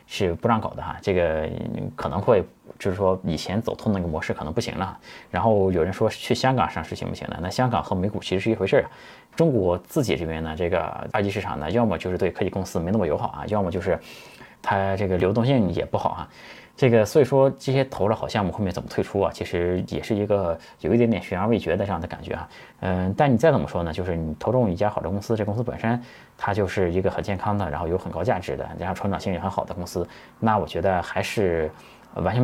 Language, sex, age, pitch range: Chinese, male, 20-39, 90-110 Hz